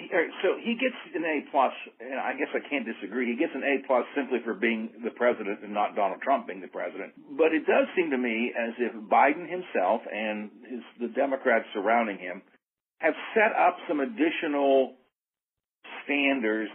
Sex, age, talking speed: male, 60-79, 175 wpm